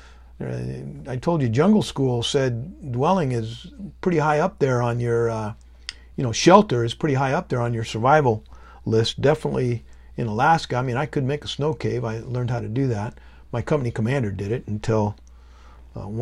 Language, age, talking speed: English, 50-69, 190 wpm